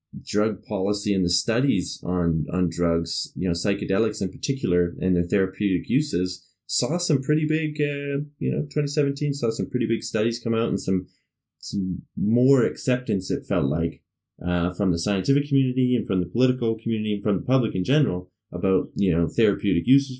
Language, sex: English, male